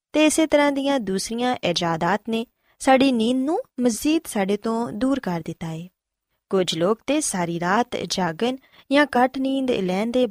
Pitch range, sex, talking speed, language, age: 185-260 Hz, female, 165 wpm, Punjabi, 20-39